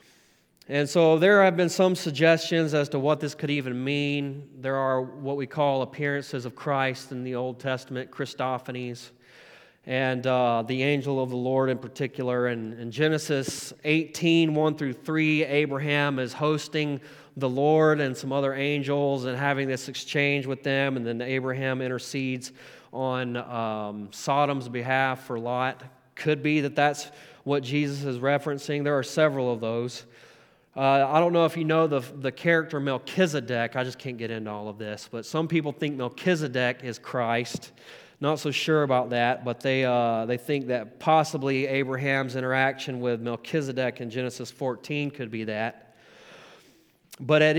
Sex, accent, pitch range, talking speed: male, American, 125-145 Hz, 165 wpm